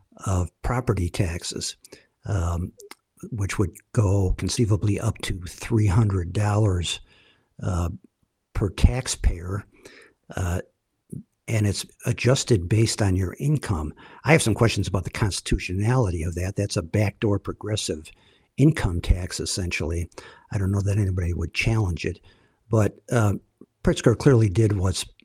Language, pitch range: English, 95-115 Hz